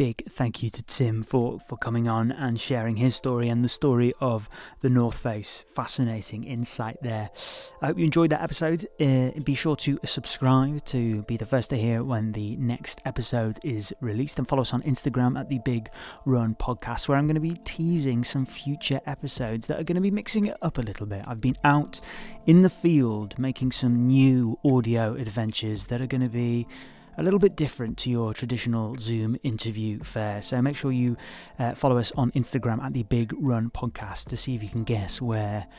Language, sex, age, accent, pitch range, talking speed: English, male, 30-49, British, 115-135 Hz, 205 wpm